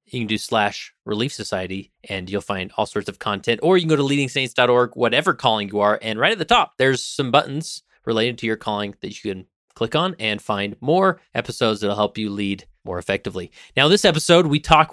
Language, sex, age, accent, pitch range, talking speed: English, male, 30-49, American, 105-145 Hz, 220 wpm